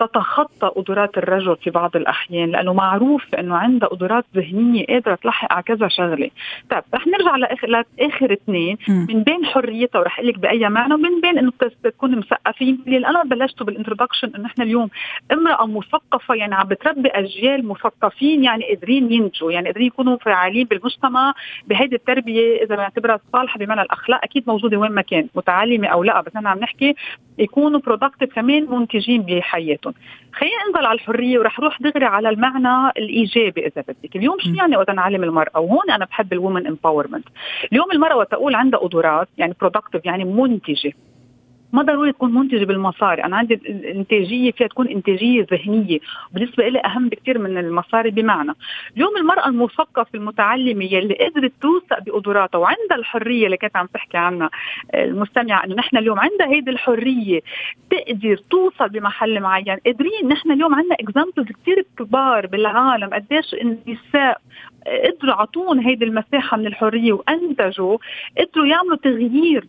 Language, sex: Arabic, female